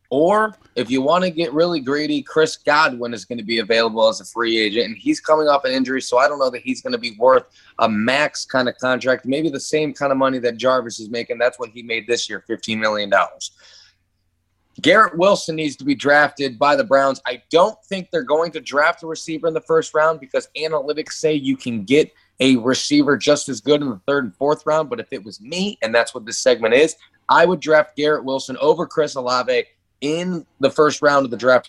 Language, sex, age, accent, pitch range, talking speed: English, male, 20-39, American, 115-150 Hz, 235 wpm